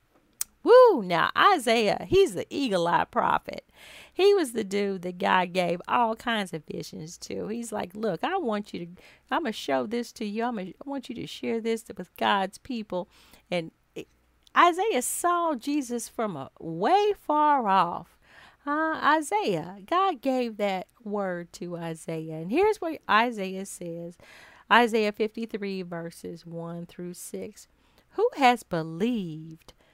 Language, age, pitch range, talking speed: English, 40-59, 170-275 Hz, 140 wpm